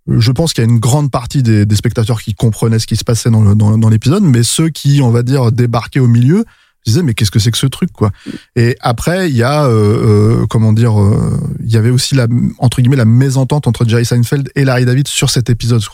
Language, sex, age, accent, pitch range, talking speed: French, male, 20-39, French, 110-135 Hz, 255 wpm